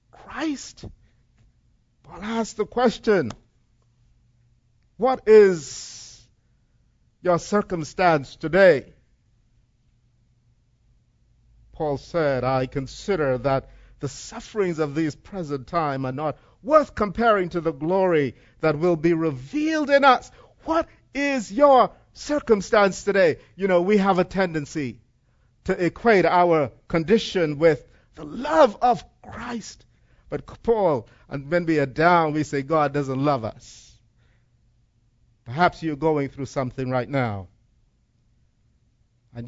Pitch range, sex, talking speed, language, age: 120-180 Hz, male, 115 wpm, English, 50-69